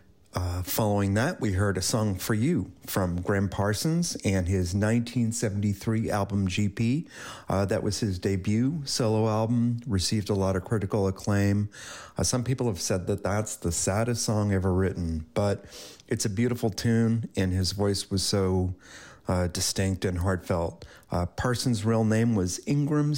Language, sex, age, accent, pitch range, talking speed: English, male, 40-59, American, 95-115 Hz, 160 wpm